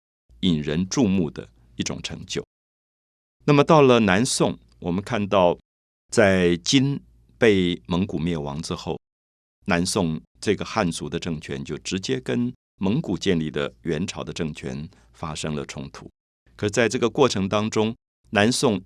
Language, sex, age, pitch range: Chinese, male, 50-69, 75-105 Hz